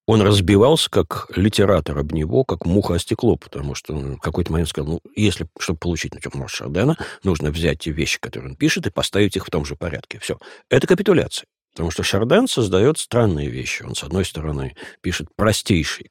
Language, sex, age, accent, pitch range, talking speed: Russian, male, 50-69, native, 80-115 Hz, 200 wpm